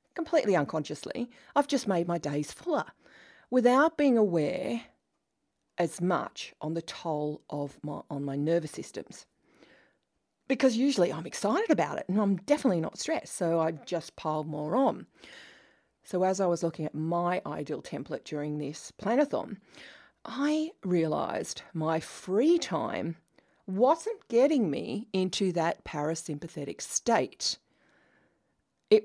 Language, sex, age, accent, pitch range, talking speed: English, female, 40-59, Australian, 155-215 Hz, 130 wpm